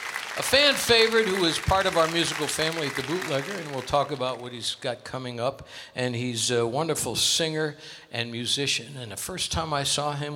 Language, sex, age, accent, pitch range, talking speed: English, male, 60-79, American, 120-160 Hz, 210 wpm